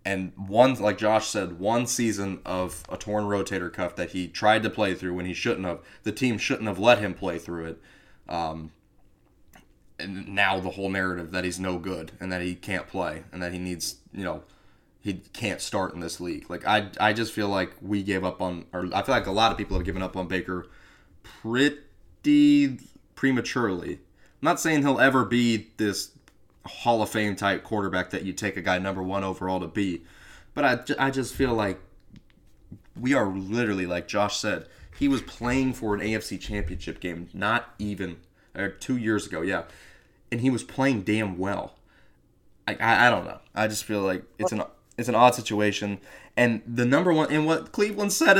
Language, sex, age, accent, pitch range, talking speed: English, male, 20-39, American, 95-125 Hz, 200 wpm